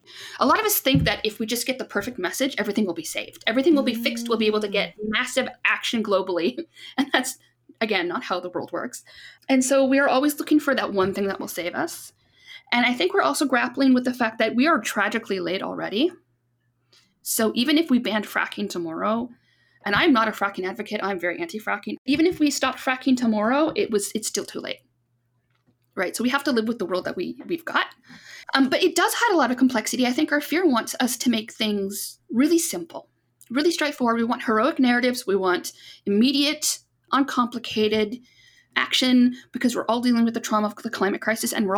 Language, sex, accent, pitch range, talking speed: English, female, American, 205-275 Hz, 215 wpm